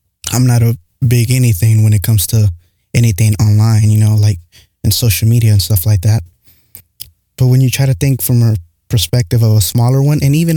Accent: American